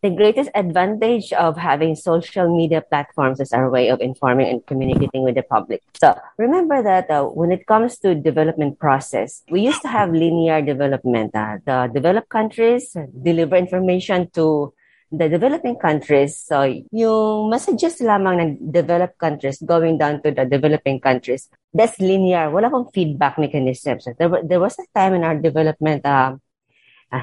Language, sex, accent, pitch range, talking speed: Filipino, female, native, 150-195 Hz, 155 wpm